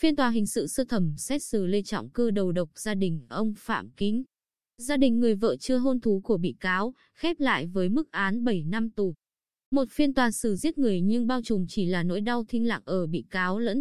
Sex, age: female, 20-39